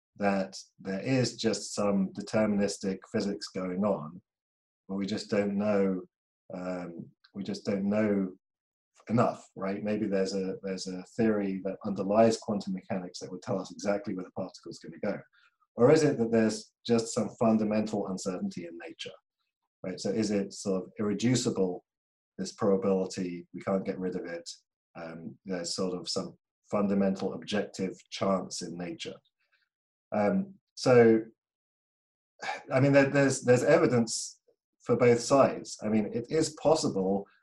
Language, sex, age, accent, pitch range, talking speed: English, male, 40-59, British, 95-115 Hz, 150 wpm